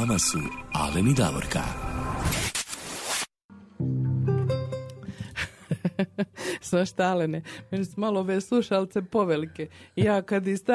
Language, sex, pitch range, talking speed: Croatian, female, 160-215 Hz, 80 wpm